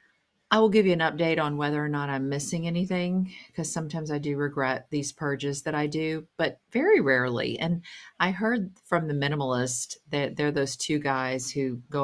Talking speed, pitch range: 195 wpm, 135-175 Hz